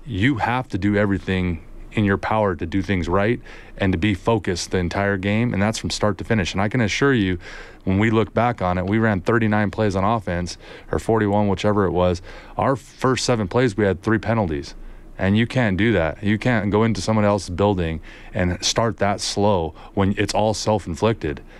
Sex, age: male, 30-49